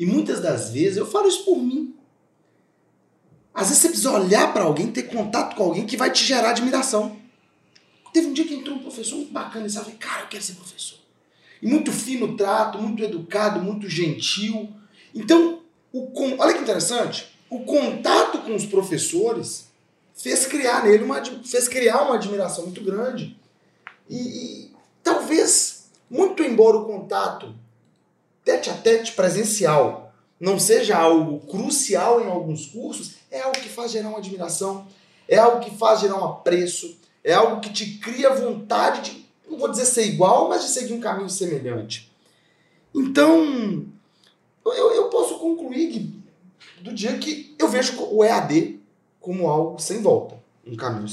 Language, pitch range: Portuguese, 185-265 Hz